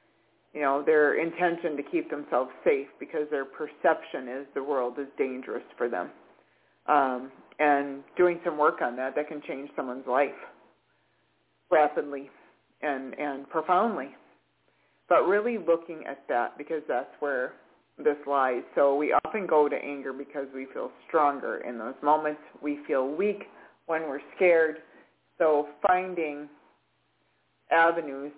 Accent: American